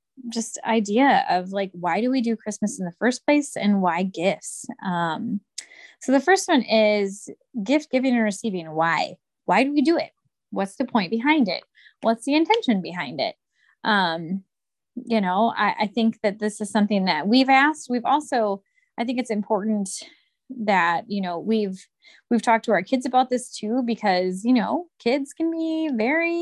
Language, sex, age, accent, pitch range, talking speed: English, female, 20-39, American, 195-270 Hz, 180 wpm